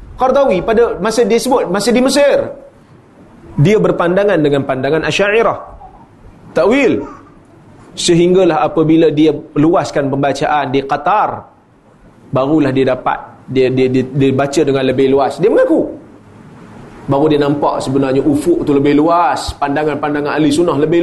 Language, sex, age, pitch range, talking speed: Malay, male, 30-49, 145-200 Hz, 130 wpm